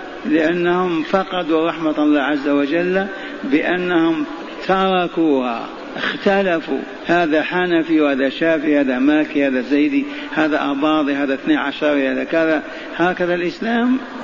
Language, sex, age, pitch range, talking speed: Arabic, male, 50-69, 155-190 Hz, 110 wpm